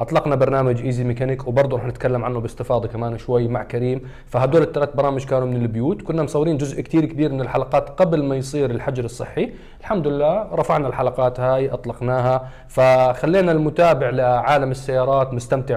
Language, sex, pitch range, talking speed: Arabic, male, 120-145 Hz, 160 wpm